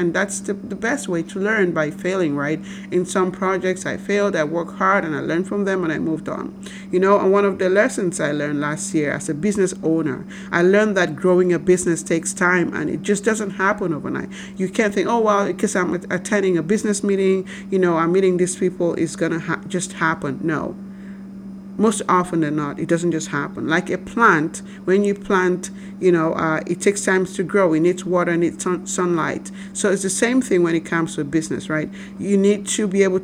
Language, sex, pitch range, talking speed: English, male, 170-195 Hz, 225 wpm